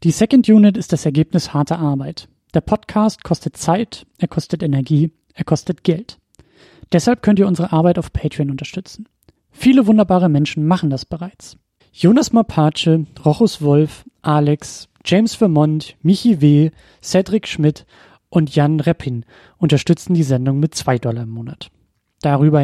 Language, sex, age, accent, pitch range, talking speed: German, male, 30-49, German, 145-185 Hz, 145 wpm